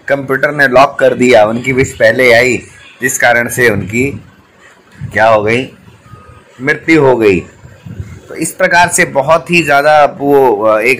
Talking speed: 155 wpm